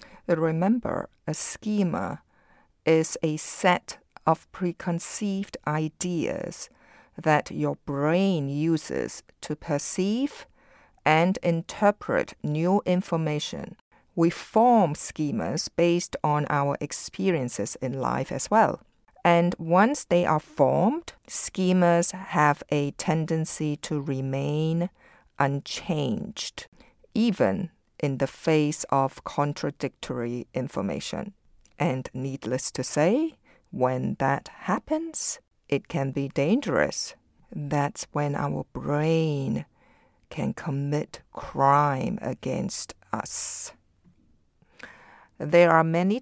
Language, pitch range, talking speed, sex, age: English, 145-175 Hz, 95 wpm, female, 50-69